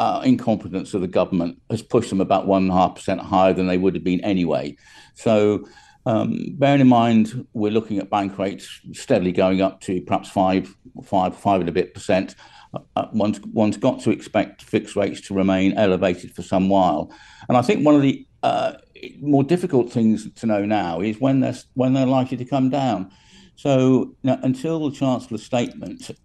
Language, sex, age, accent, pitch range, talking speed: English, male, 50-69, British, 95-115 Hz, 190 wpm